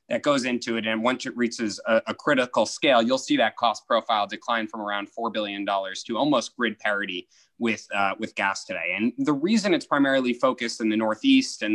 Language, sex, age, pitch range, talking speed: English, male, 20-39, 110-150 Hz, 210 wpm